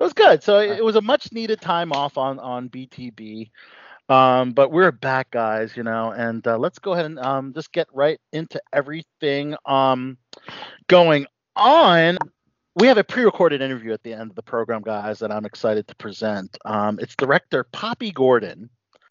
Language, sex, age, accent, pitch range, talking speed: English, male, 40-59, American, 125-185 Hz, 180 wpm